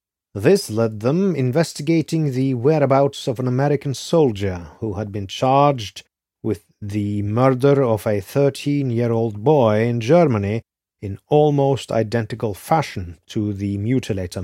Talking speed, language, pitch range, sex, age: 125 wpm, English, 100-130 Hz, male, 30-49